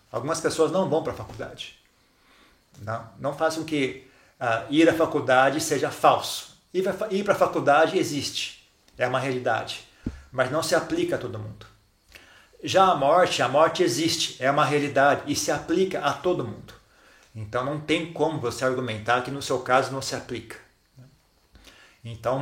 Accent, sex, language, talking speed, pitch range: Brazilian, male, Portuguese, 165 wpm, 120-160 Hz